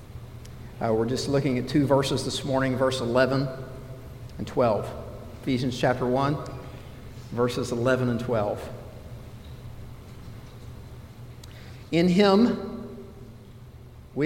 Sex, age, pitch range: male, 50-69, 125-160 Hz